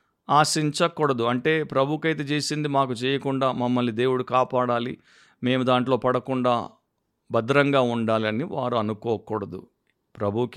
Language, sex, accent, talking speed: Telugu, male, native, 95 wpm